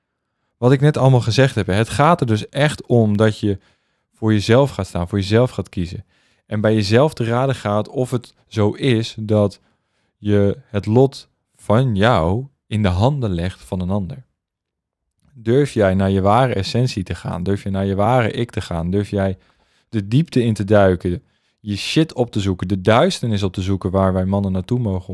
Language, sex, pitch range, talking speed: Dutch, male, 95-125 Hz, 200 wpm